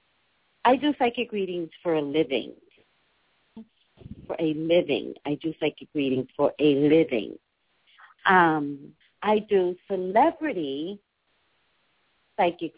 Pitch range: 155-205 Hz